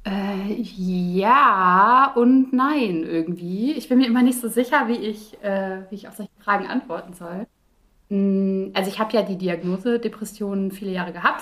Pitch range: 195-225 Hz